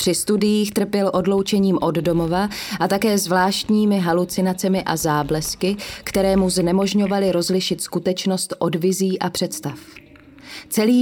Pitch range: 165-200 Hz